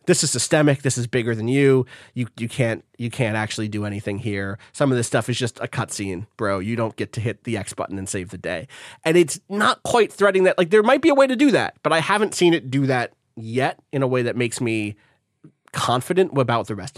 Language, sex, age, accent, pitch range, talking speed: English, male, 30-49, American, 115-150 Hz, 245 wpm